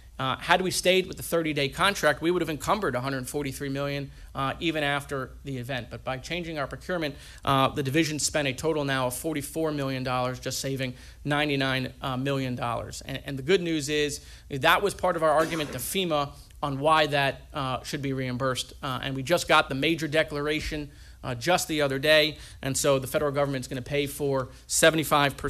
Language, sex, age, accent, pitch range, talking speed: English, male, 40-59, American, 135-155 Hz, 195 wpm